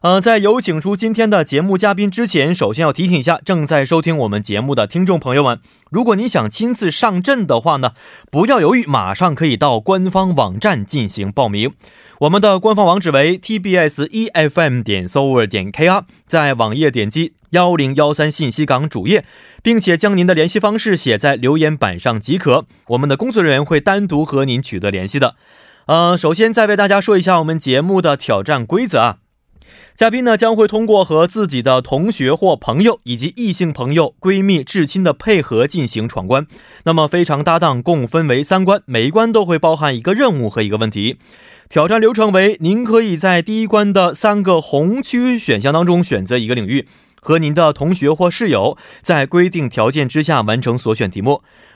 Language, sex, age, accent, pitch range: Korean, male, 20-39, Chinese, 135-195 Hz